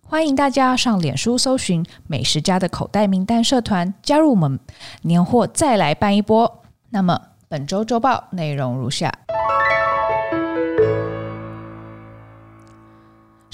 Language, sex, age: Chinese, female, 20-39